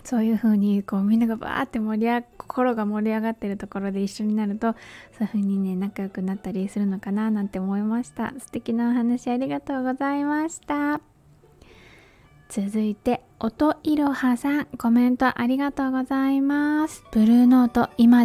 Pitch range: 210-265 Hz